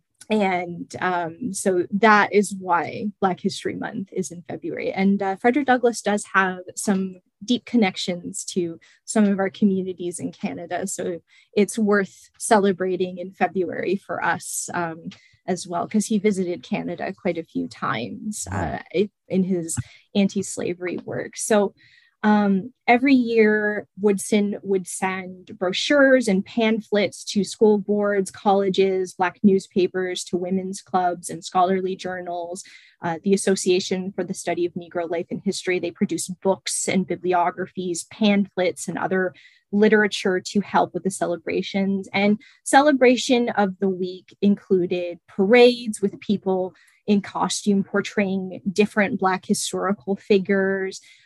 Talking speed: 135 wpm